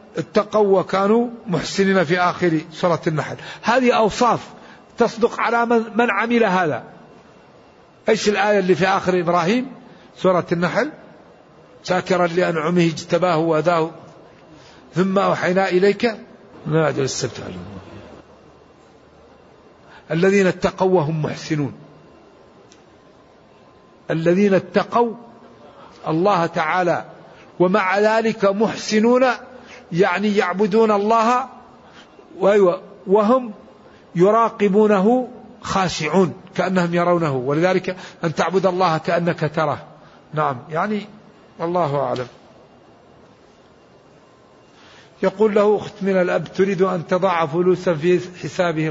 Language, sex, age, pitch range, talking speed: Arabic, male, 60-79, 165-210 Hz, 90 wpm